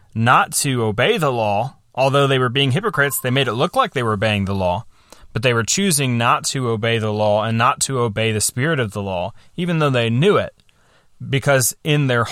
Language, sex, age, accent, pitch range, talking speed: English, male, 30-49, American, 110-140 Hz, 225 wpm